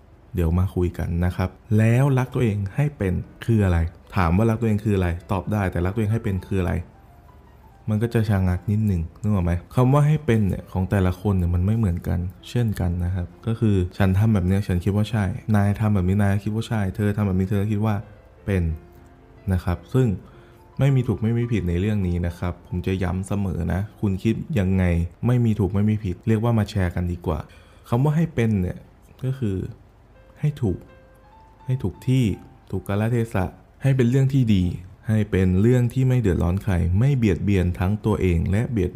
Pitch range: 90-110 Hz